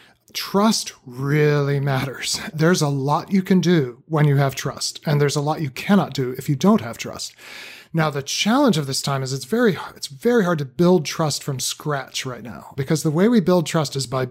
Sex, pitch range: male, 140-180 Hz